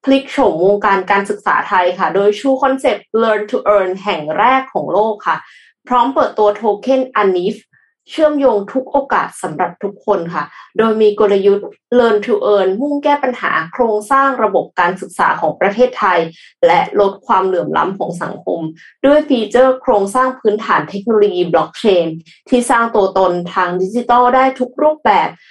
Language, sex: Thai, female